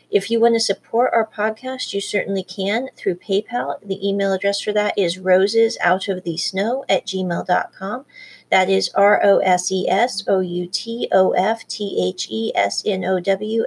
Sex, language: female, English